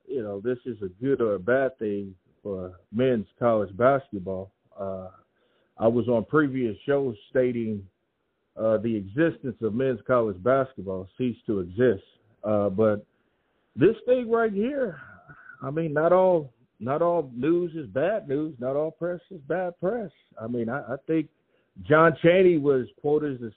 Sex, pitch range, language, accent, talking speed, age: male, 110-145 Hz, English, American, 160 wpm, 50-69